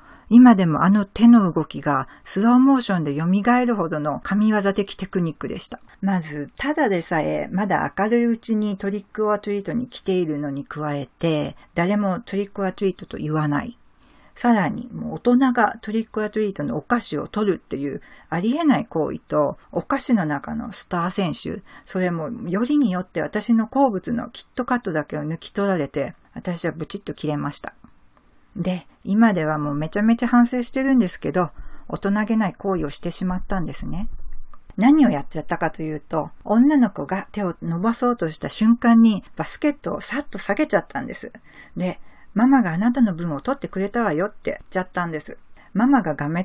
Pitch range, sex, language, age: 160-230 Hz, female, Japanese, 50-69